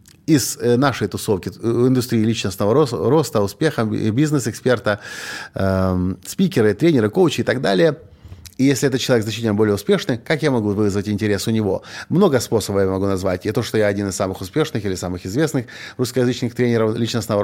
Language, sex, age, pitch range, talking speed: Russian, male, 30-49, 100-130 Hz, 165 wpm